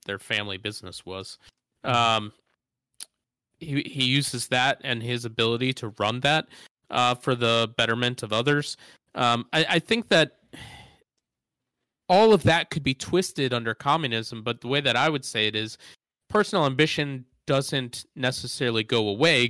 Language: English